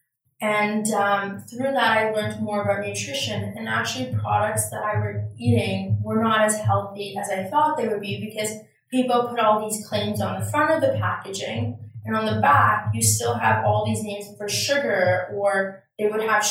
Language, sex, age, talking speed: English, female, 20-39, 195 wpm